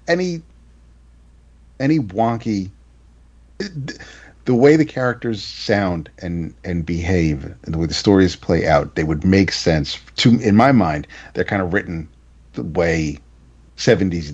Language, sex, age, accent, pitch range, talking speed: English, male, 40-59, American, 70-110 Hz, 140 wpm